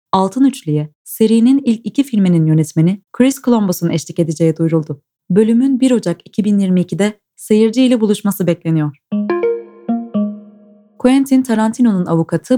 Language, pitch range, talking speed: Turkish, 165-230 Hz, 110 wpm